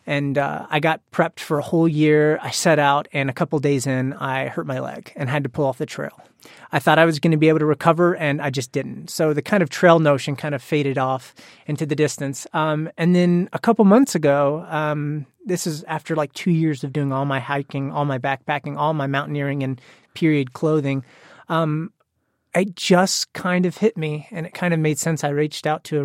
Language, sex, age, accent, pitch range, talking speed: English, male, 30-49, American, 145-175 Hz, 235 wpm